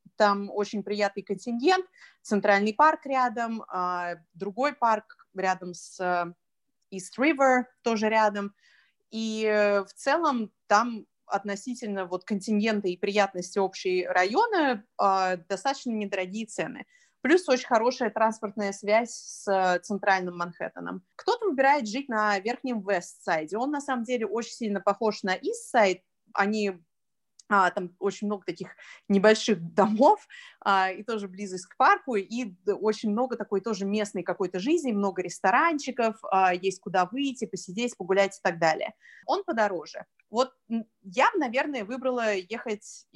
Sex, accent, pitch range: female, native, 195-245 Hz